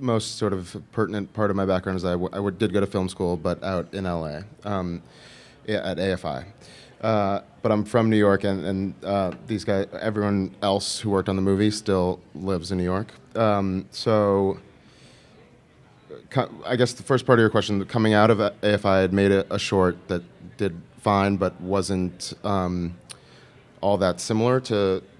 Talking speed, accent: 185 wpm, American